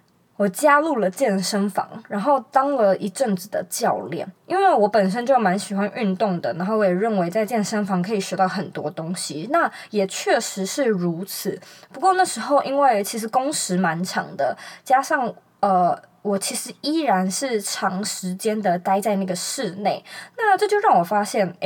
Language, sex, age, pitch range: Chinese, female, 20-39, 190-250 Hz